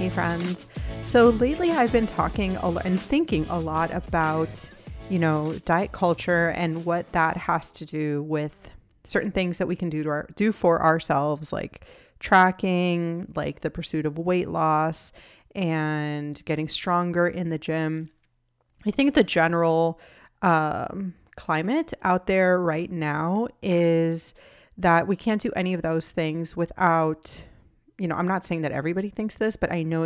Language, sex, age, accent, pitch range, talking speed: English, female, 30-49, American, 160-185 Hz, 155 wpm